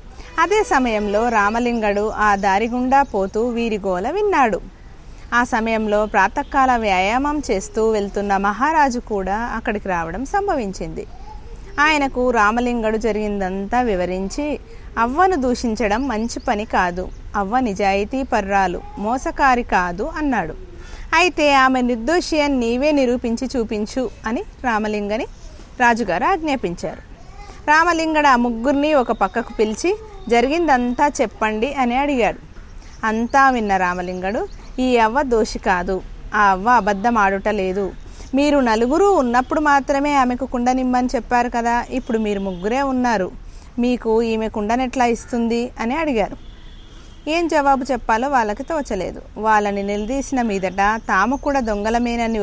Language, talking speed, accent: Telugu, 110 wpm, native